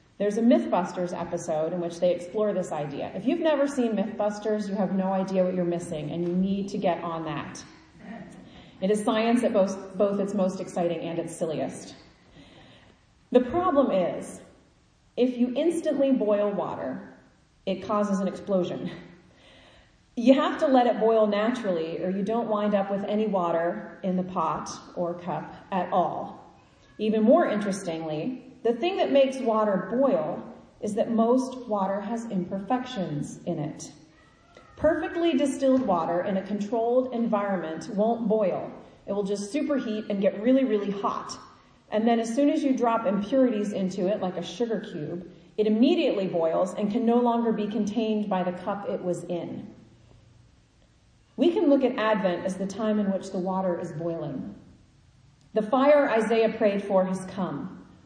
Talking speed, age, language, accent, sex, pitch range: 165 wpm, 30-49, English, American, female, 180-235 Hz